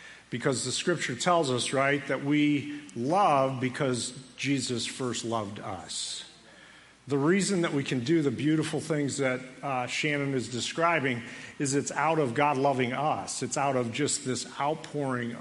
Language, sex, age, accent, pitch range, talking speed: English, male, 50-69, American, 125-155 Hz, 160 wpm